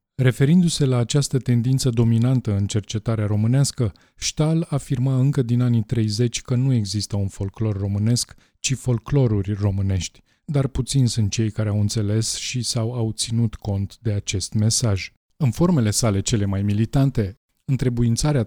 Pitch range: 105-130 Hz